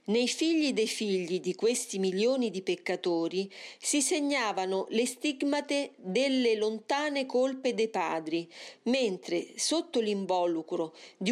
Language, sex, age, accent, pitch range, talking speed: Italian, female, 40-59, native, 185-255 Hz, 115 wpm